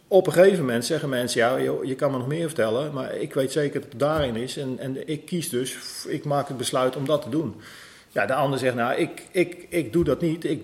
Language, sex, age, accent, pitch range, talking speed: Dutch, male, 40-59, Dutch, 120-150 Hz, 260 wpm